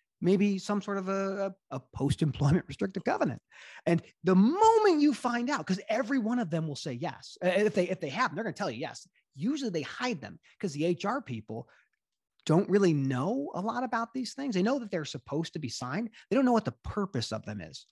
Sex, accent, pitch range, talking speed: male, American, 135-200 Hz, 220 wpm